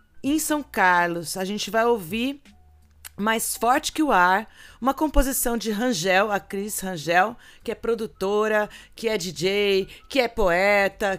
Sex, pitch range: female, 200-250 Hz